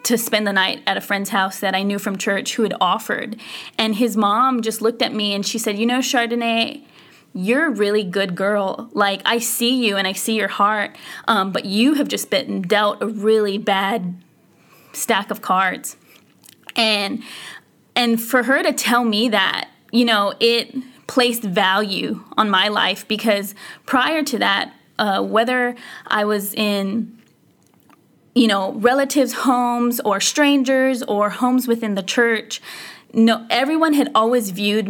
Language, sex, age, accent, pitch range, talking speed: English, female, 20-39, American, 205-245 Hz, 165 wpm